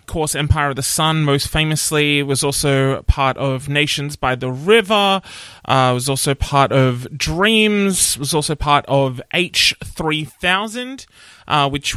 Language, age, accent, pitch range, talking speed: English, 20-39, Australian, 135-165 Hz, 145 wpm